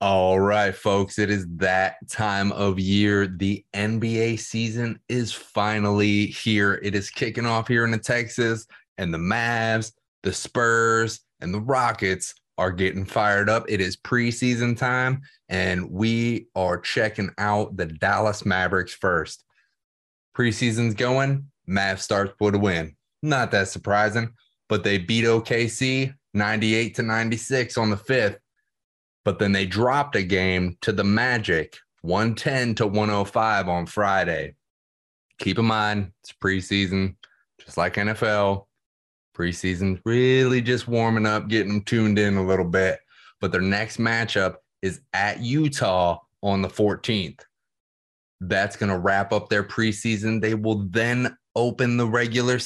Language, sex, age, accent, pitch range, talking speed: English, male, 20-39, American, 95-115 Hz, 140 wpm